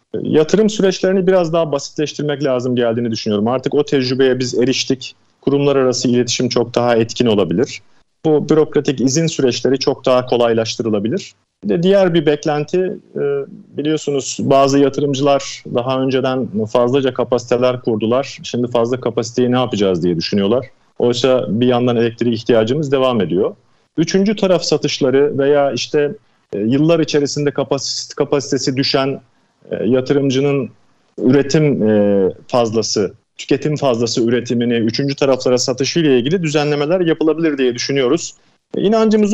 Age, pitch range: 40-59, 125-150 Hz